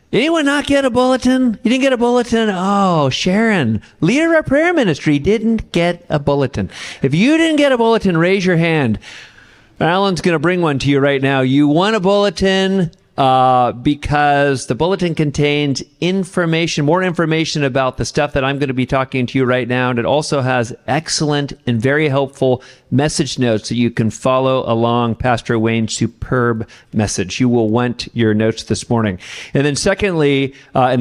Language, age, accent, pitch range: English, 40-59, American, 130-180 Hz